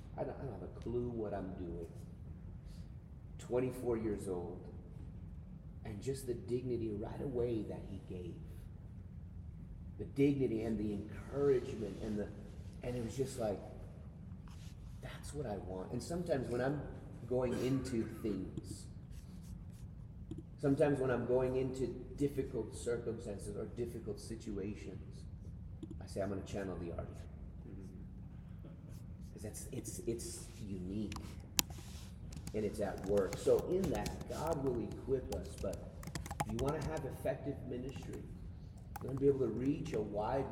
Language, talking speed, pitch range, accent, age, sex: English, 140 wpm, 90-120 Hz, American, 30-49, male